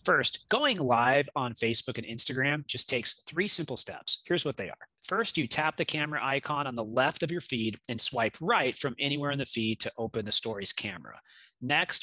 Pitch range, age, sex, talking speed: 130-165 Hz, 30-49, male, 210 wpm